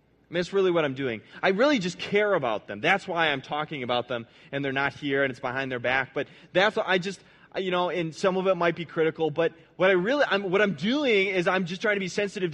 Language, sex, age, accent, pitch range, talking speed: English, male, 20-39, American, 165-220 Hz, 280 wpm